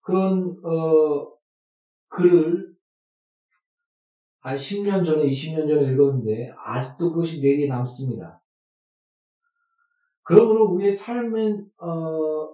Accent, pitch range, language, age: native, 140-180 Hz, Korean, 40-59